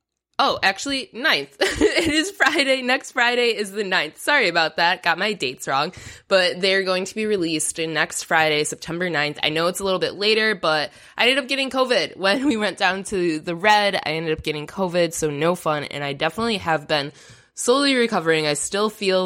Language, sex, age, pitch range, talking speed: English, female, 10-29, 155-210 Hz, 205 wpm